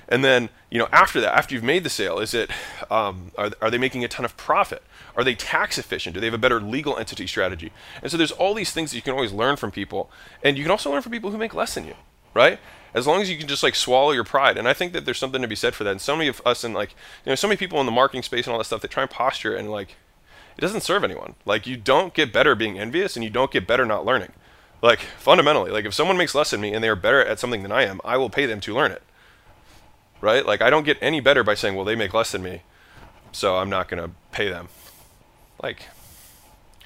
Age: 20-39